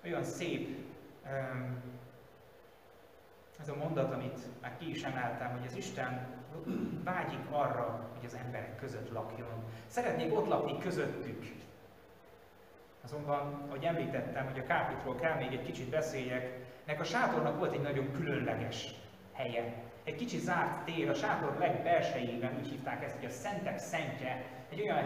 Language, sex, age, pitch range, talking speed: Hungarian, male, 30-49, 125-155 Hz, 140 wpm